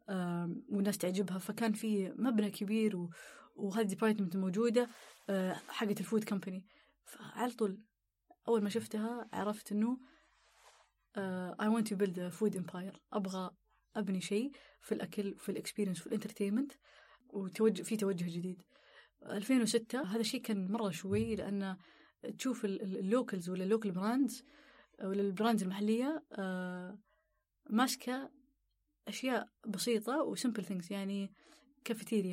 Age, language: 20-39, Arabic